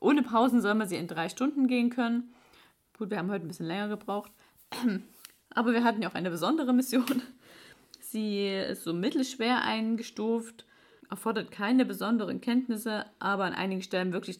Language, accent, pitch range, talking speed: German, German, 185-235 Hz, 165 wpm